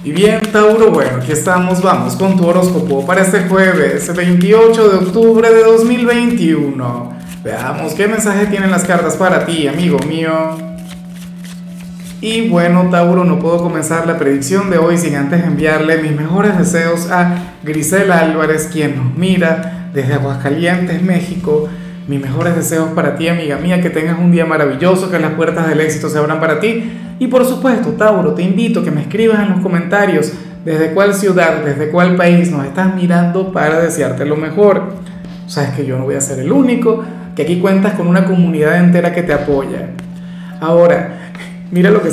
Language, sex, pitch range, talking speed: Spanish, male, 160-185 Hz, 175 wpm